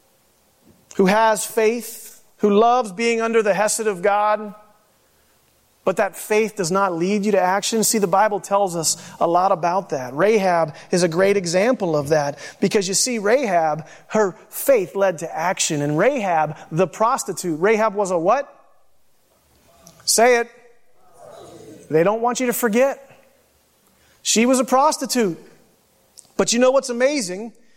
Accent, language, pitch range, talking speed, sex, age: American, English, 200-260 Hz, 150 wpm, male, 40-59